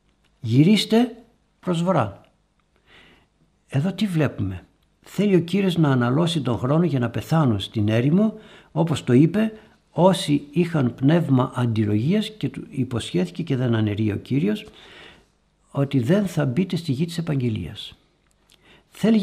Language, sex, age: Greek, male, 60-79